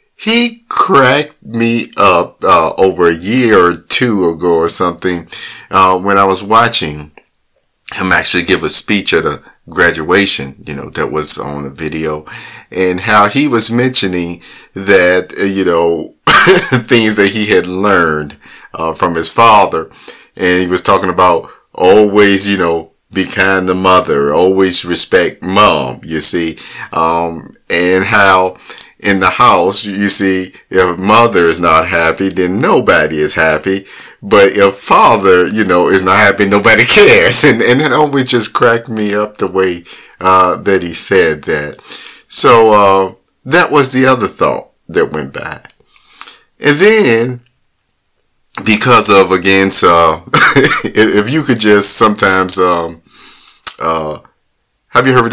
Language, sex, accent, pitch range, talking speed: English, male, American, 85-110 Hz, 150 wpm